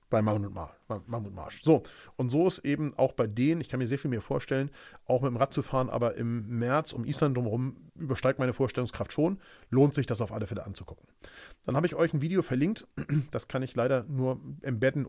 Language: German